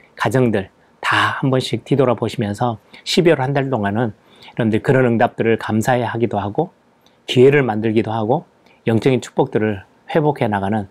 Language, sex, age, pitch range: Korean, male, 30-49, 110-140 Hz